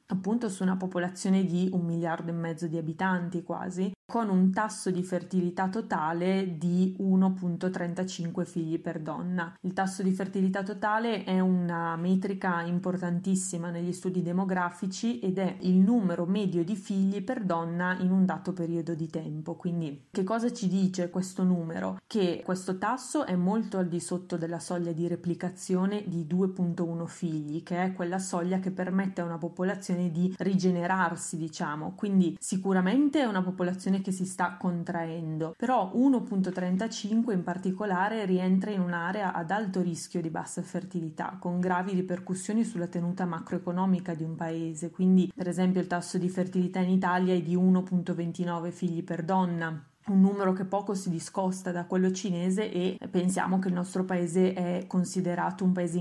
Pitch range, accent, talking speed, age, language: 175-190 Hz, native, 160 wpm, 20-39, Italian